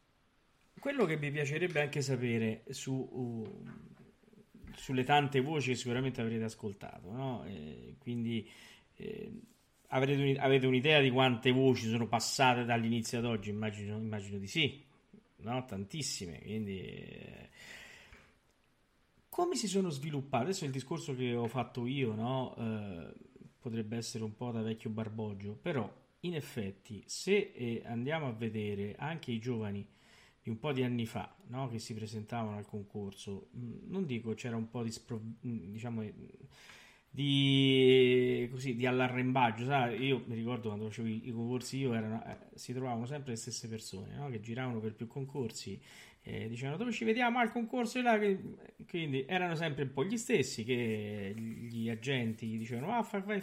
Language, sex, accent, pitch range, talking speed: Italian, male, native, 115-145 Hz, 150 wpm